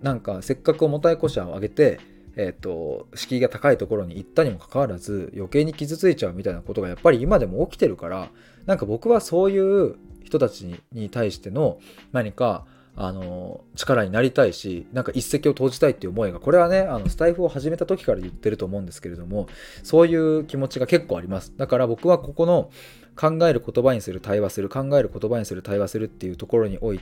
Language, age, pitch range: Japanese, 20-39, 100-155 Hz